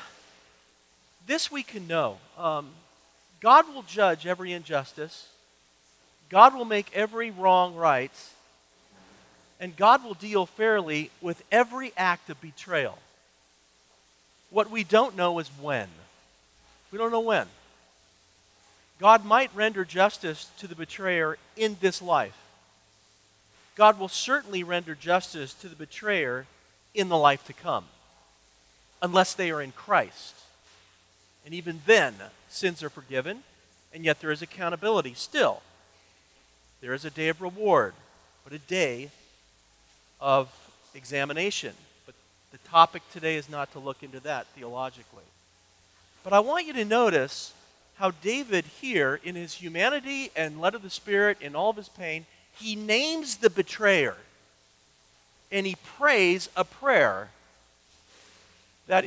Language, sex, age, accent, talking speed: English, male, 40-59, American, 135 wpm